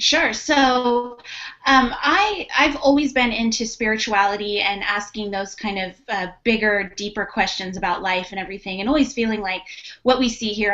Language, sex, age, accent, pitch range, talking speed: English, female, 20-39, American, 200-245 Hz, 170 wpm